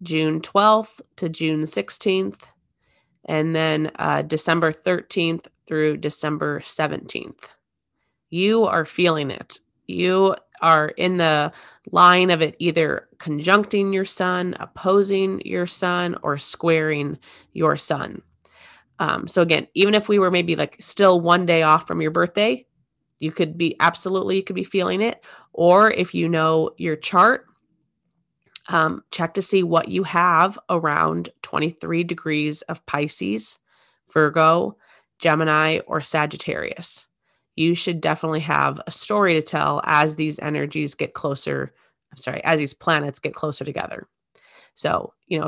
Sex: female